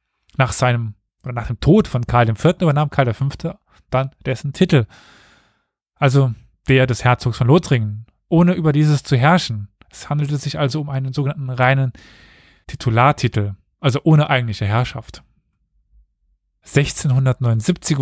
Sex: male